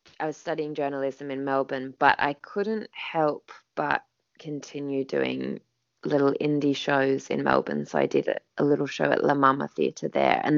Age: 20-39